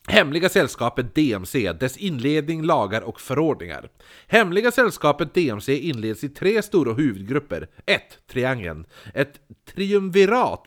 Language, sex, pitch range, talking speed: Swedish, male, 110-165 Hz, 110 wpm